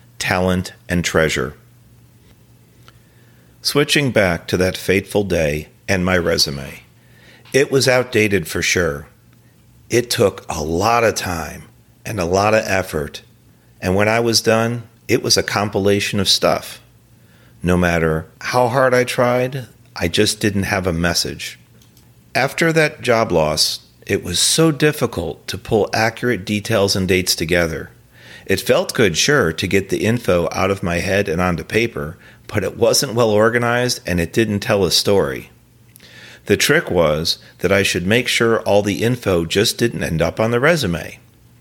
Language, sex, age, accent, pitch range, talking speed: English, male, 40-59, American, 90-120 Hz, 160 wpm